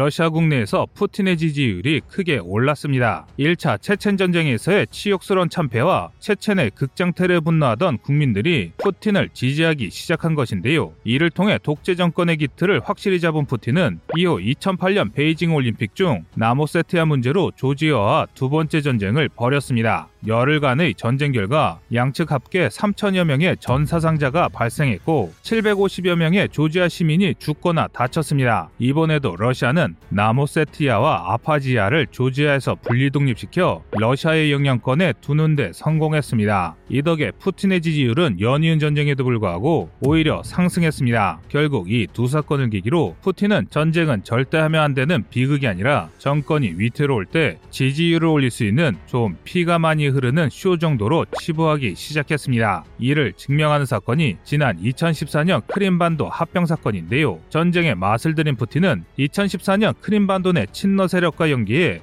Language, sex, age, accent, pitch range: Korean, male, 30-49, native, 125-170 Hz